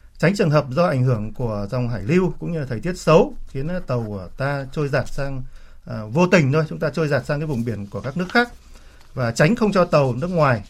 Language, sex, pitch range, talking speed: Vietnamese, male, 120-165 Hz, 260 wpm